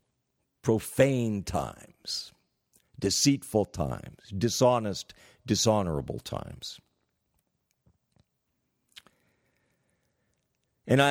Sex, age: male, 60-79